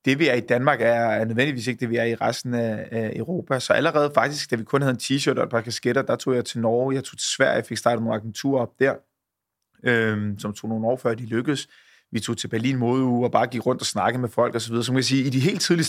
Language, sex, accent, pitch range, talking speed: Danish, male, native, 115-135 Hz, 280 wpm